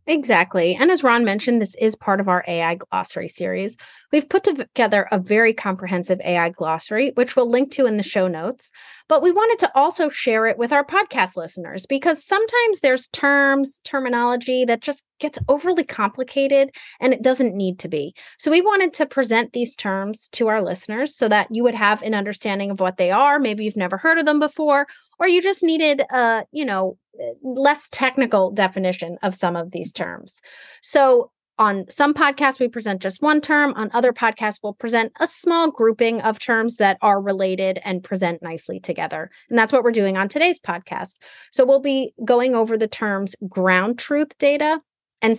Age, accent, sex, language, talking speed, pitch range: 30-49, American, female, English, 190 wpm, 195-280 Hz